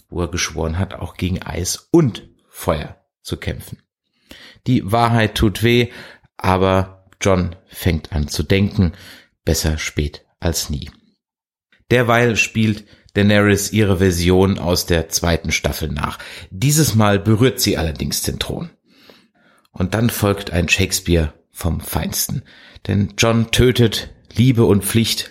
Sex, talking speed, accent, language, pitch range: male, 130 wpm, German, German, 85-110 Hz